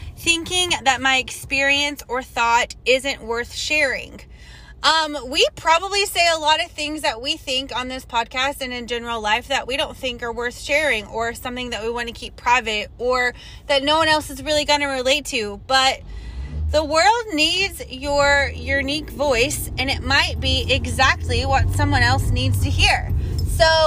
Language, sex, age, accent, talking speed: English, female, 20-39, American, 180 wpm